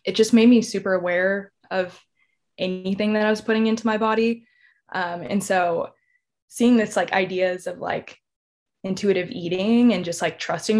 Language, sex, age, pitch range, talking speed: English, female, 20-39, 175-215 Hz, 165 wpm